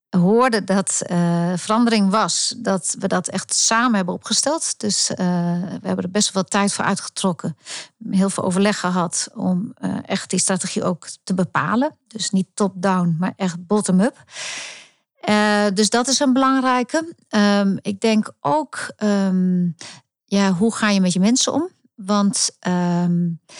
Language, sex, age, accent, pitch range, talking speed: Dutch, female, 50-69, Dutch, 180-220 Hz, 155 wpm